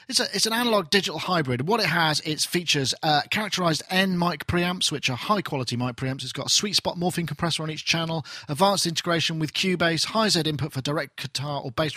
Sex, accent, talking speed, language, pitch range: male, British, 225 wpm, English, 140-185 Hz